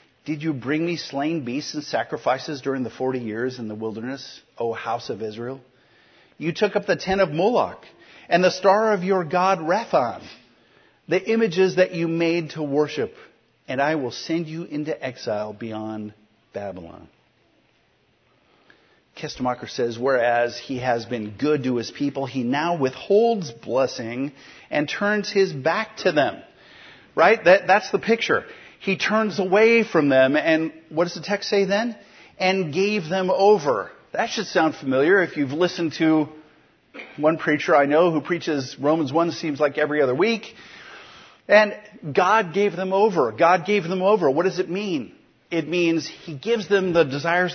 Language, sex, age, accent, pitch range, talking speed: English, male, 50-69, American, 130-190 Hz, 165 wpm